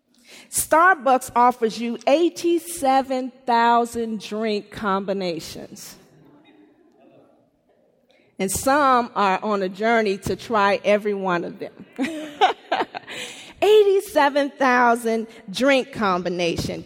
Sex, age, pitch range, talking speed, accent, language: female, 40-59, 220-280 Hz, 75 wpm, American, English